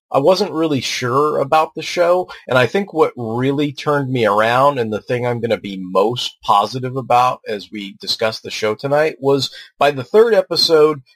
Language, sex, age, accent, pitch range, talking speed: English, male, 30-49, American, 110-145 Hz, 195 wpm